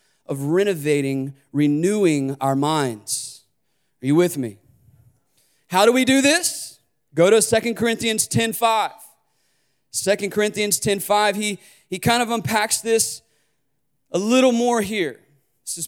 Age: 20-39